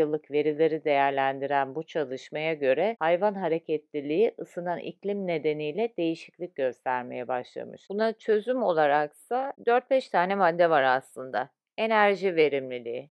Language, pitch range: Turkish, 150-210 Hz